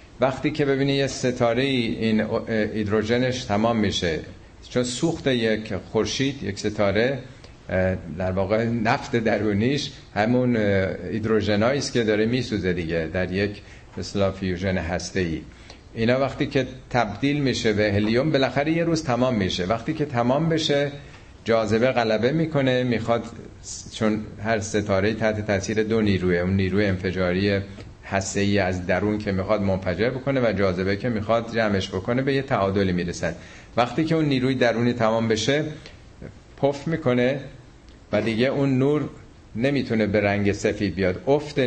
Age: 40-59